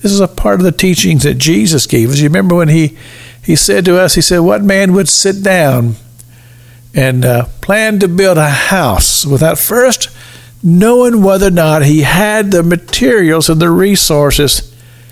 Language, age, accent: English, 50-69, American